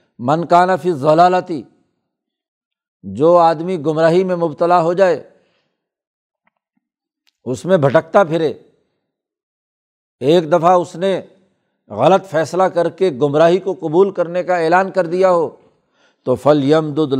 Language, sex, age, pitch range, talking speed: Urdu, male, 60-79, 155-195 Hz, 125 wpm